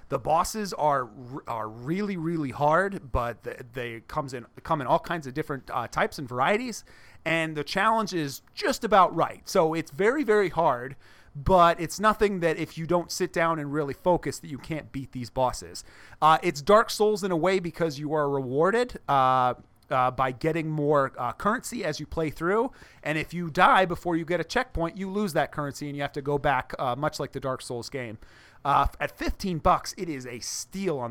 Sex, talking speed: male, 210 wpm